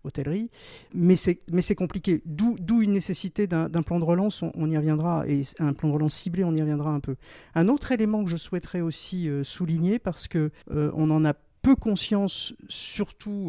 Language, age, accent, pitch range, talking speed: French, 50-69, French, 150-200 Hz, 210 wpm